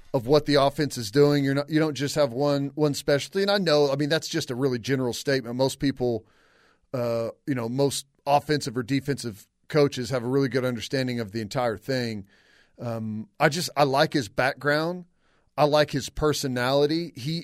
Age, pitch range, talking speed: 40-59, 125-155 Hz, 195 wpm